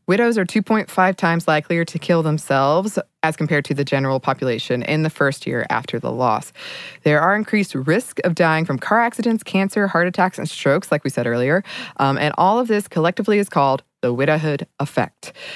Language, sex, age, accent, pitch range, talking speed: English, female, 20-39, American, 145-190 Hz, 195 wpm